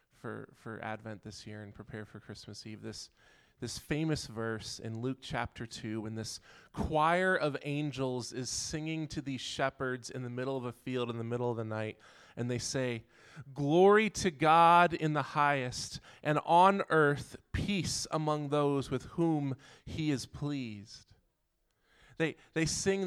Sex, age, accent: male, 20-39, American